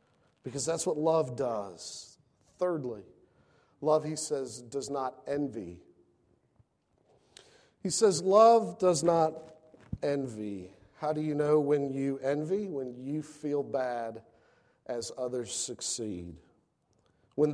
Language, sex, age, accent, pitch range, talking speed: English, male, 50-69, American, 135-185 Hz, 115 wpm